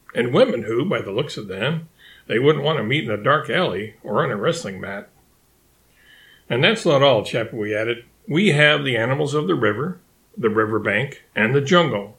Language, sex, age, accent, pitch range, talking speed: English, male, 50-69, American, 110-145 Hz, 205 wpm